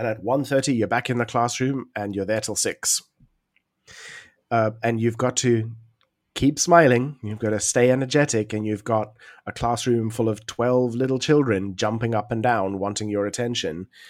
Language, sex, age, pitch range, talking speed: English, male, 30-49, 110-135 Hz, 180 wpm